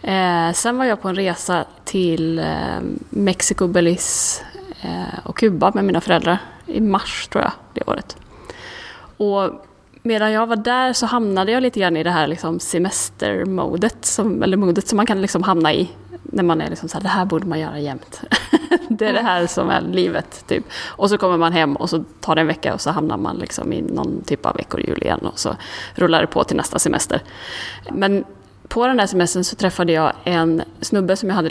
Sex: female